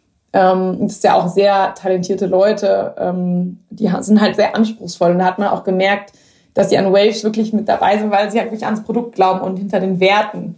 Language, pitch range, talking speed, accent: German, 190-215 Hz, 210 wpm, German